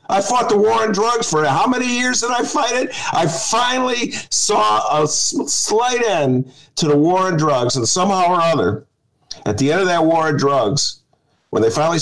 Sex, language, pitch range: male, English, 135-185 Hz